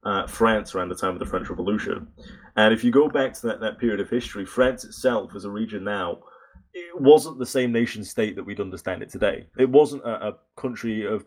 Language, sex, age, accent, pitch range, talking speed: English, male, 20-39, British, 105-125 Hz, 230 wpm